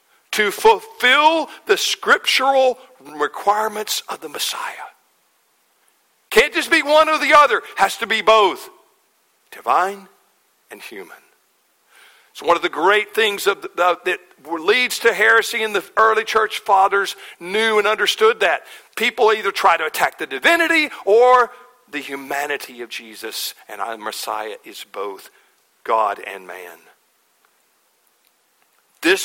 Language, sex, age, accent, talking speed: English, male, 50-69, American, 135 wpm